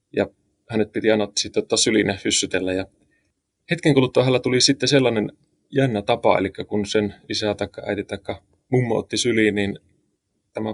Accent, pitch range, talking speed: native, 100-125 Hz, 155 wpm